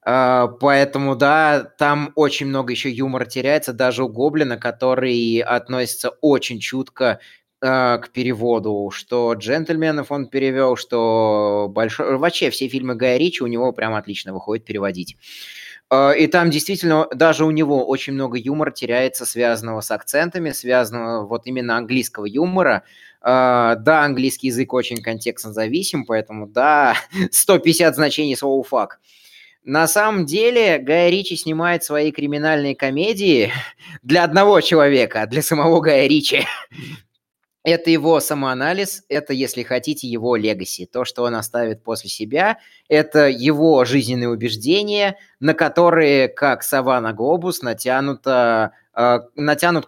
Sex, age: male, 20-39